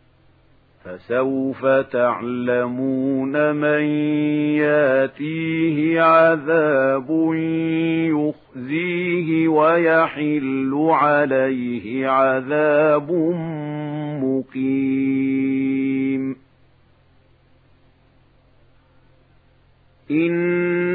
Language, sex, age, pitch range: Arabic, male, 50-69, 135-165 Hz